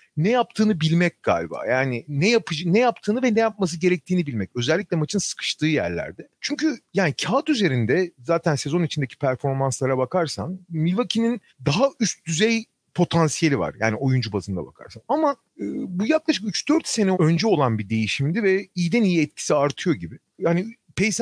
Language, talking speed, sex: Turkish, 155 wpm, male